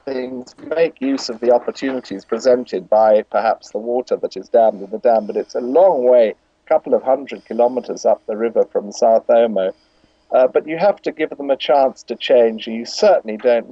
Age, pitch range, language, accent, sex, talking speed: 50-69, 115-160 Hz, English, British, male, 205 wpm